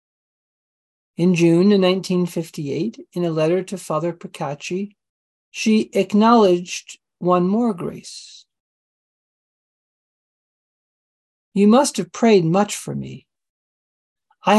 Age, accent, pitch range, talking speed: 50-69, American, 165-215 Hz, 90 wpm